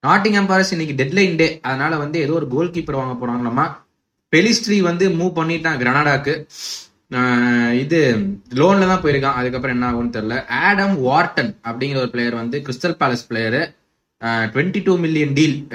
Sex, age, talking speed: male, 20-39, 85 wpm